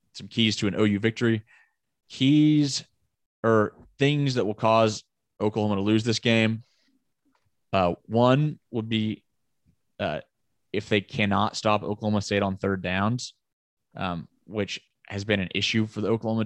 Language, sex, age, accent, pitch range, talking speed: English, male, 20-39, American, 100-115 Hz, 145 wpm